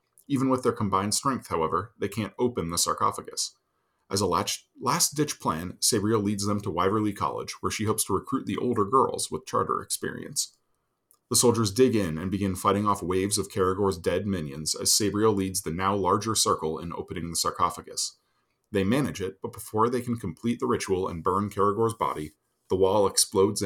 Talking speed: 185 wpm